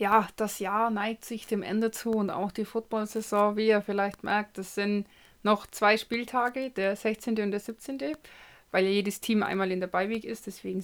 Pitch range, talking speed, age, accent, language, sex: 205-240 Hz, 195 wpm, 20-39, German, German, female